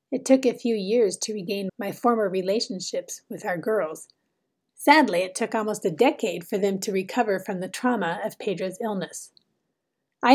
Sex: female